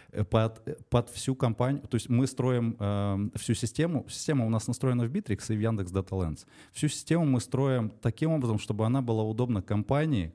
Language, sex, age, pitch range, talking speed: Russian, male, 20-39, 100-130 Hz, 180 wpm